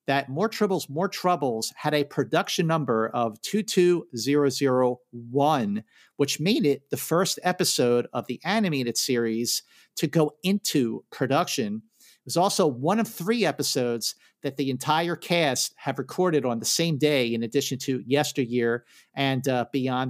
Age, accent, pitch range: 50-69, American, 130-175 Hz